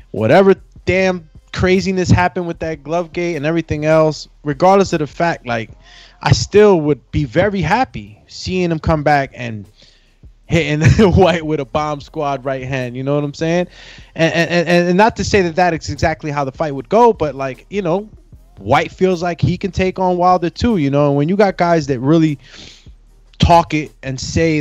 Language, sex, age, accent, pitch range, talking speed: English, male, 20-39, American, 130-165 Hz, 200 wpm